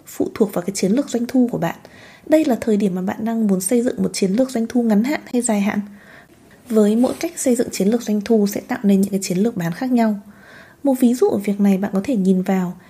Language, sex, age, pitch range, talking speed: Vietnamese, female, 20-39, 205-265 Hz, 280 wpm